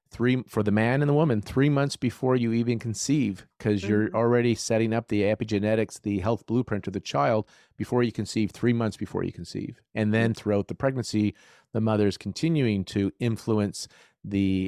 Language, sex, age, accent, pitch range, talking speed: English, male, 40-59, American, 95-115 Hz, 190 wpm